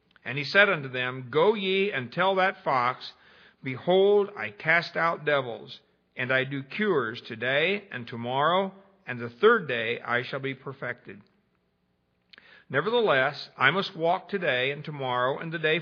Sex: male